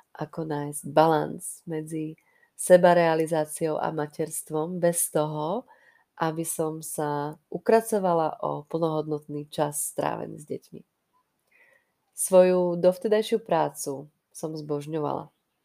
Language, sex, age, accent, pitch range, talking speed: Czech, female, 30-49, native, 155-175 Hz, 90 wpm